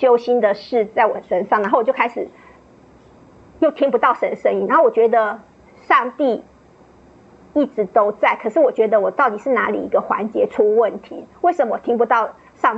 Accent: American